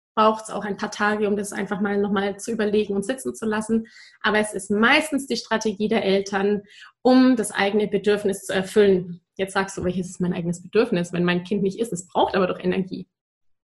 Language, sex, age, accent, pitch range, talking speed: German, female, 20-39, German, 200-240 Hz, 215 wpm